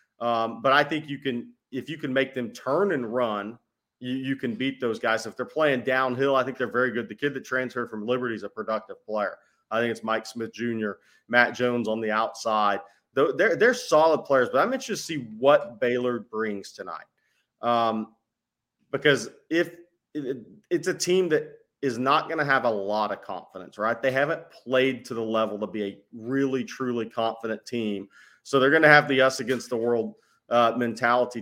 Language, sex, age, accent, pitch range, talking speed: English, male, 30-49, American, 115-145 Hz, 200 wpm